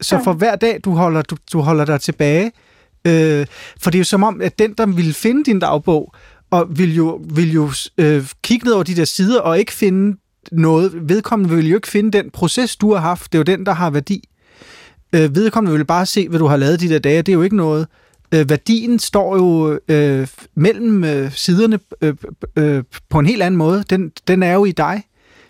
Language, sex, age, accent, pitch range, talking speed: Danish, male, 30-49, native, 155-200 Hz, 230 wpm